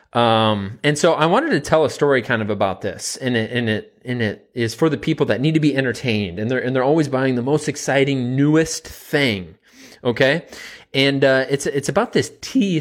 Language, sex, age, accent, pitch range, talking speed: English, male, 30-49, American, 110-150 Hz, 220 wpm